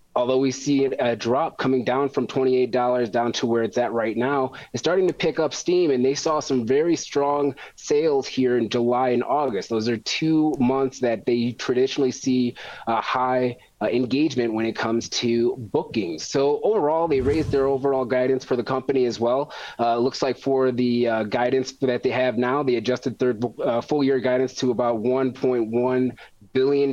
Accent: American